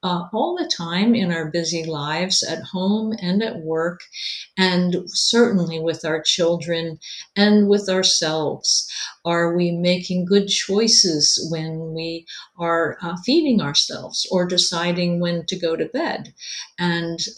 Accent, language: American, English